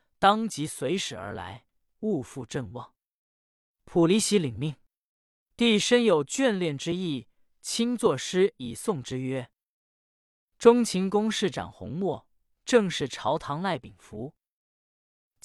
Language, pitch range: Chinese, 135-205 Hz